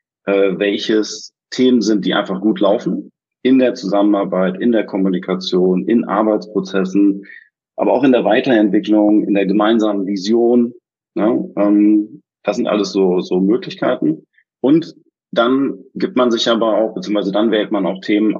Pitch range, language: 95-110 Hz, German